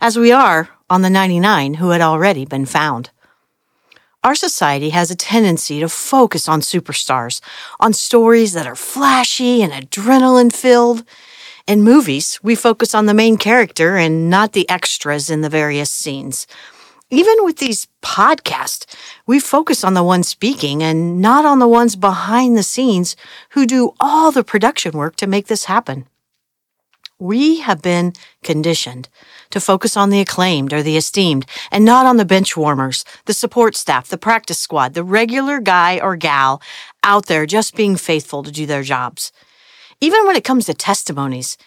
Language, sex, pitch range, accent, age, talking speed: English, female, 155-235 Hz, American, 50-69, 165 wpm